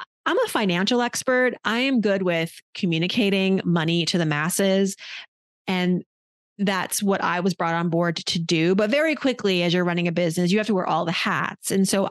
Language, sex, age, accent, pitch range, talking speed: English, female, 30-49, American, 175-215 Hz, 200 wpm